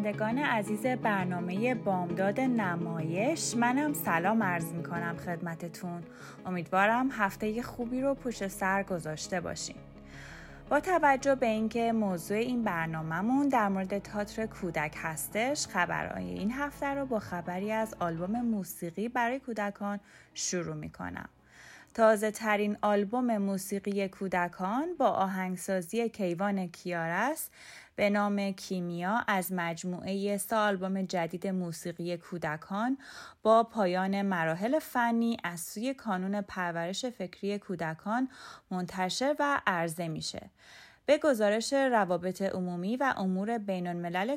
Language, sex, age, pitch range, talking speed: Persian, female, 20-39, 180-235 Hz, 110 wpm